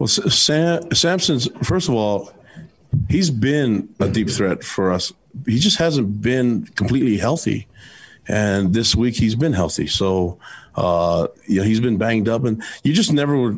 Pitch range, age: 95-110 Hz, 40-59